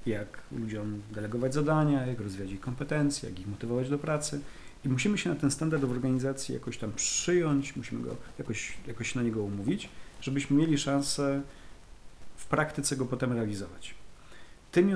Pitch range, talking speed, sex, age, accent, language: 120-150 Hz, 160 wpm, male, 40-59, native, Polish